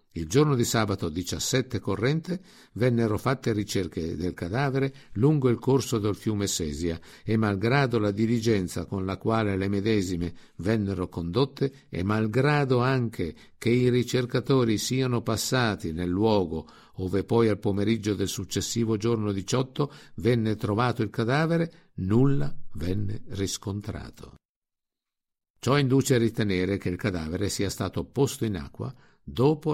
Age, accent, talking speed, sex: 50-69, native, 135 wpm, male